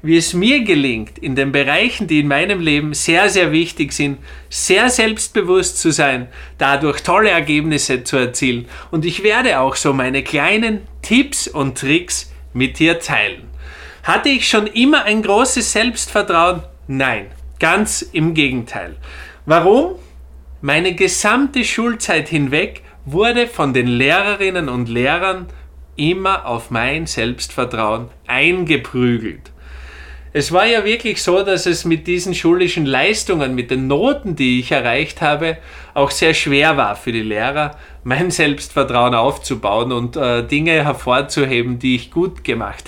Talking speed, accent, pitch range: 140 wpm, Austrian, 130-190 Hz